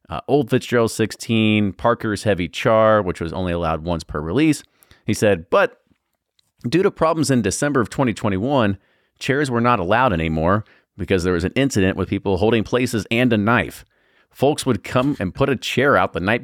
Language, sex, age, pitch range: English, male, 30-49, 95-120 Hz